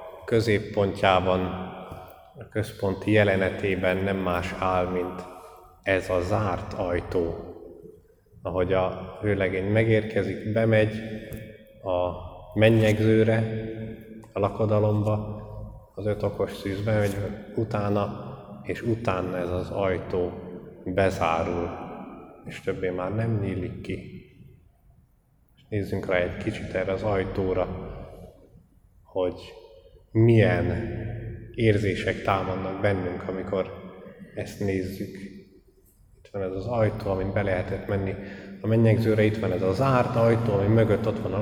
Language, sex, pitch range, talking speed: Hungarian, male, 95-110 Hz, 110 wpm